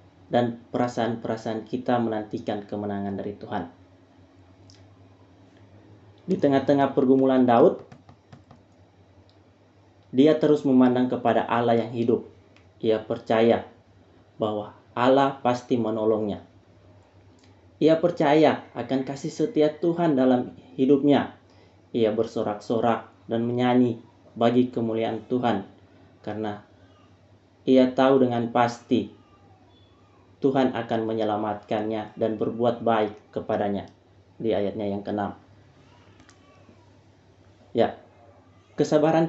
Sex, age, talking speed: male, 20-39, 85 wpm